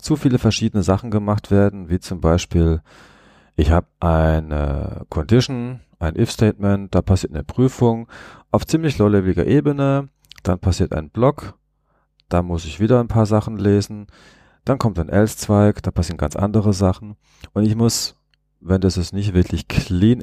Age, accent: 40-59, German